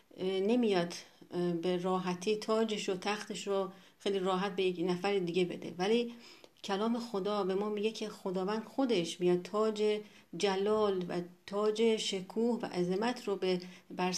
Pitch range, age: 185-225 Hz, 40-59